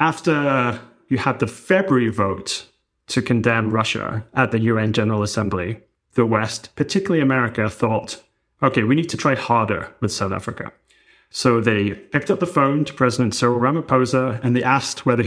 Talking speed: 165 wpm